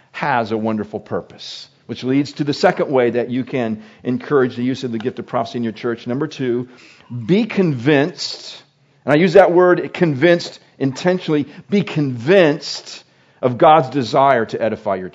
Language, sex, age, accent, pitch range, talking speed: English, male, 50-69, American, 130-175 Hz, 170 wpm